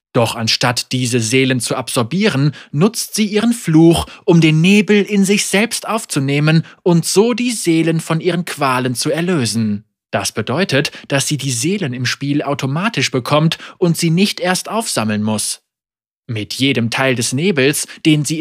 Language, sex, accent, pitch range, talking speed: German, male, German, 130-185 Hz, 160 wpm